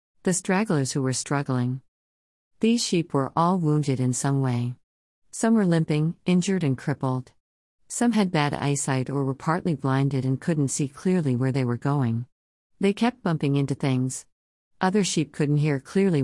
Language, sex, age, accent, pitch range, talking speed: English, female, 50-69, American, 130-160 Hz, 165 wpm